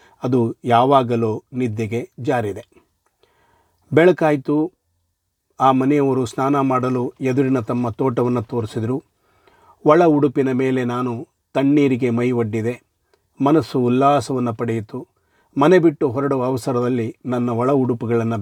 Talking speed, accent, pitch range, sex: 100 wpm, native, 115-135 Hz, male